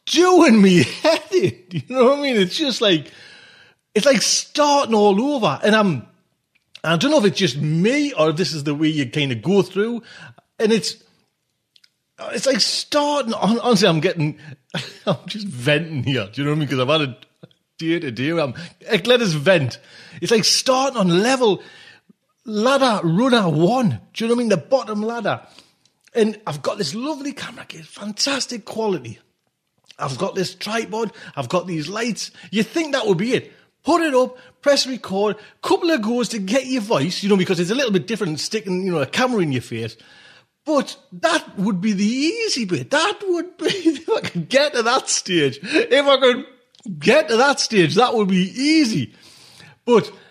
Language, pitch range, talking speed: English, 180-260 Hz, 195 wpm